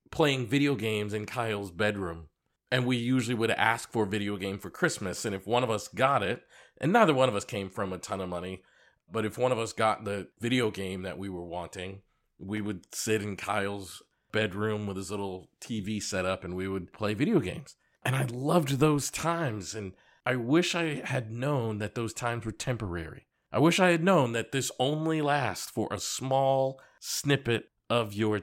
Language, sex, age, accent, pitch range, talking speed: English, male, 40-59, American, 105-125 Hz, 205 wpm